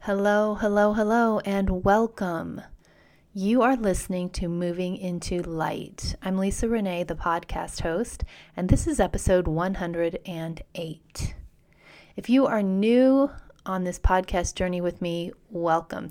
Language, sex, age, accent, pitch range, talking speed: English, female, 30-49, American, 170-210 Hz, 125 wpm